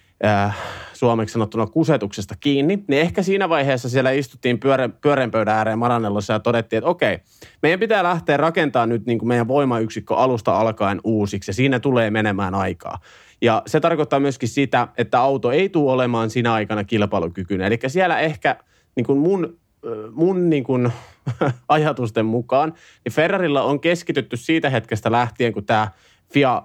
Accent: native